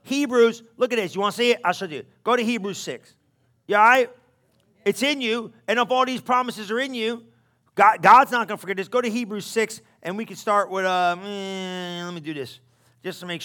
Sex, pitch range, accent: male, 170-235 Hz, American